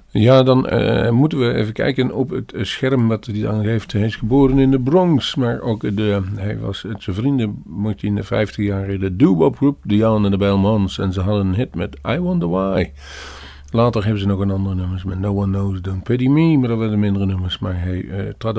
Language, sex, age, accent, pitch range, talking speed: Dutch, male, 50-69, Dutch, 100-125 Hz, 235 wpm